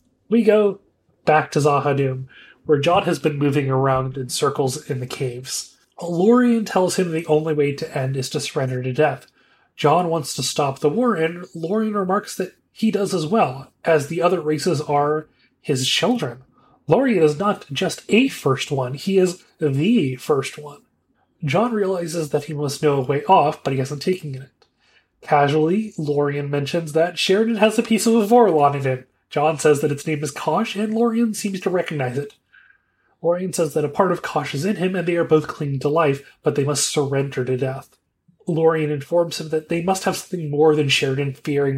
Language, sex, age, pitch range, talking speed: English, male, 30-49, 140-175 Hz, 195 wpm